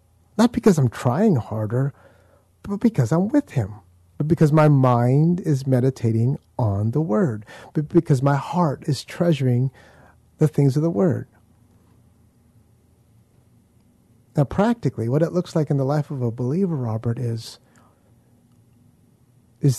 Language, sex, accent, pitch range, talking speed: English, male, American, 115-145 Hz, 135 wpm